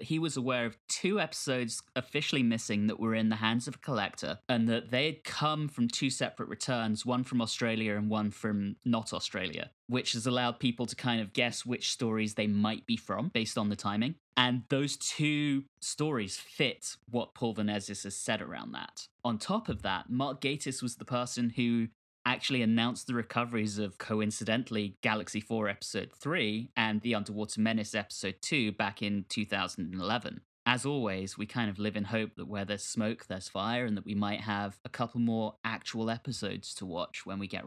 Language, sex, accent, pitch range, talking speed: English, male, British, 105-125 Hz, 195 wpm